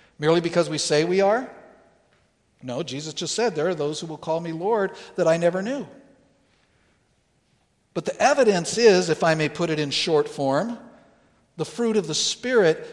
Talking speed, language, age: 180 wpm, English, 60-79